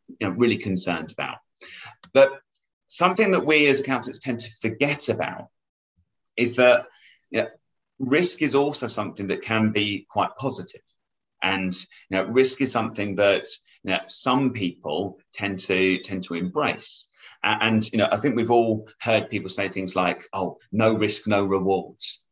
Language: English